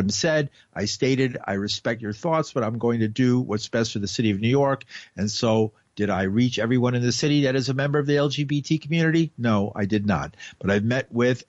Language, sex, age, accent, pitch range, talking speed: English, male, 50-69, American, 105-130 Hz, 240 wpm